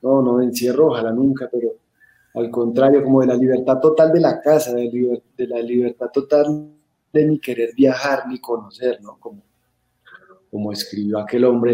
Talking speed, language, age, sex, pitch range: 175 wpm, Spanish, 30-49, male, 120-145 Hz